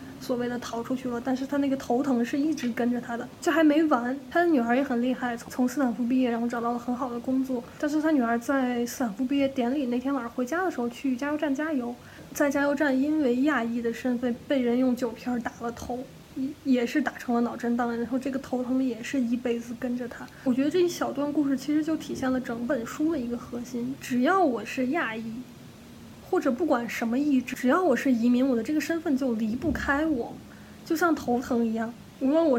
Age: 10-29